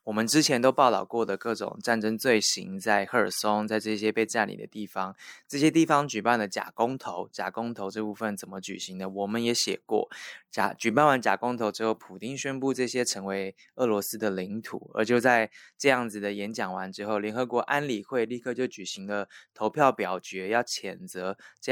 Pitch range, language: 100-120 Hz, Chinese